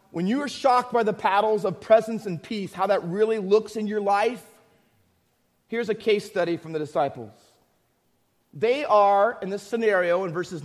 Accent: American